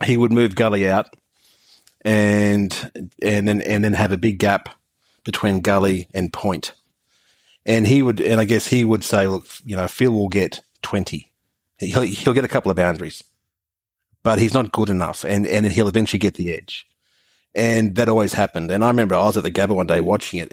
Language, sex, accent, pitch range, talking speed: English, male, Australian, 95-115 Hz, 200 wpm